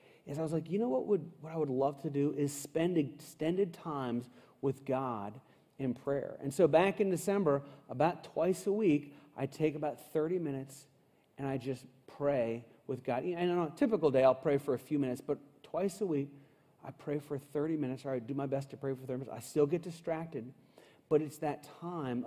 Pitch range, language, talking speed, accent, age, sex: 130-160 Hz, English, 215 wpm, American, 40-59, male